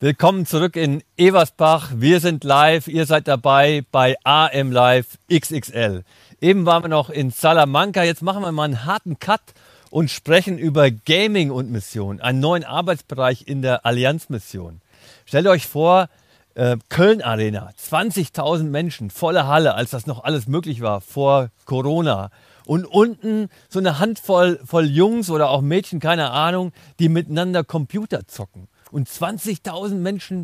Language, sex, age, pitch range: German, male, 50-69, 120-175 Hz